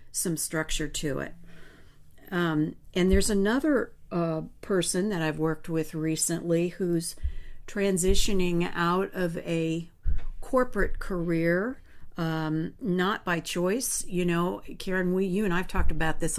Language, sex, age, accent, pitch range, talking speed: English, female, 50-69, American, 160-190 Hz, 135 wpm